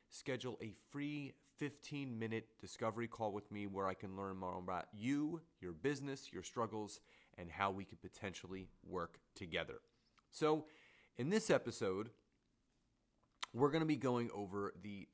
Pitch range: 95-125 Hz